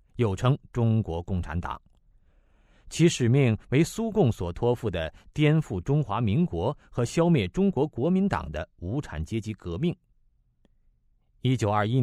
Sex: male